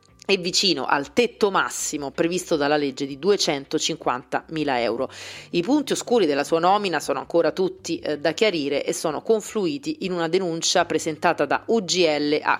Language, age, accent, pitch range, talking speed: Italian, 30-49, native, 150-185 Hz, 155 wpm